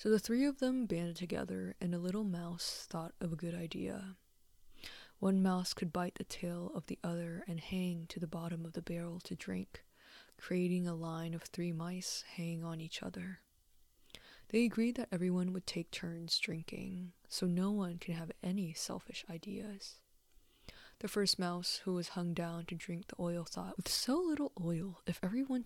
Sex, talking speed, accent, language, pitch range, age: female, 185 wpm, American, English, 170-195 Hz, 20-39